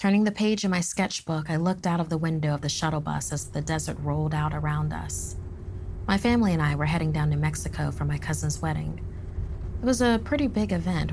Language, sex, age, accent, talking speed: English, female, 30-49, American, 225 wpm